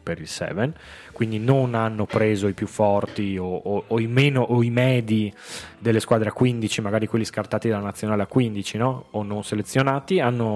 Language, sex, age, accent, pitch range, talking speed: Italian, male, 20-39, native, 100-125 Hz, 190 wpm